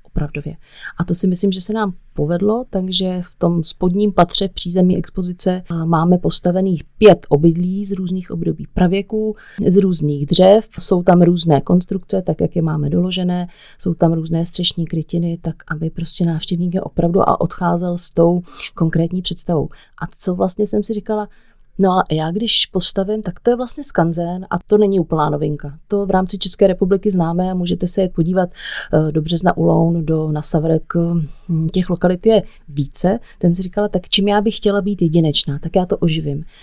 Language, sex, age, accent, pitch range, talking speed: Czech, female, 30-49, native, 170-200 Hz, 175 wpm